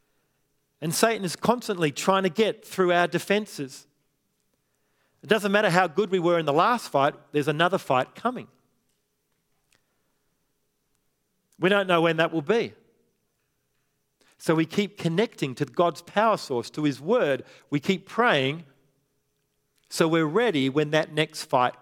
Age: 40-59